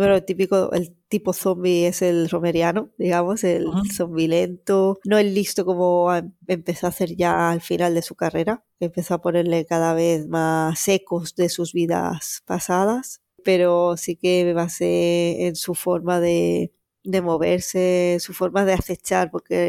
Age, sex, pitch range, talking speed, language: 20-39, female, 165-185 Hz, 160 wpm, Spanish